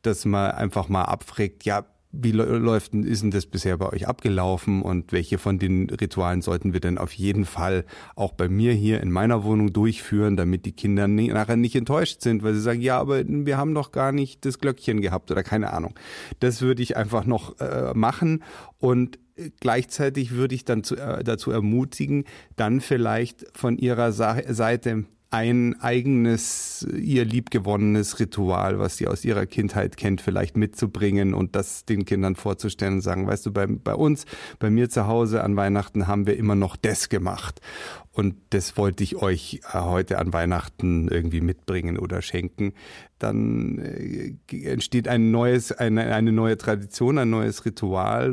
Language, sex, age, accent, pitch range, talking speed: German, male, 40-59, German, 95-120 Hz, 170 wpm